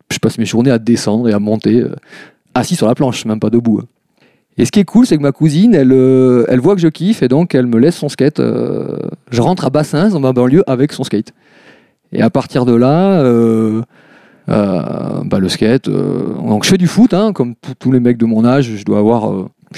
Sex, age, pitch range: male, 40-59, 115-155 Hz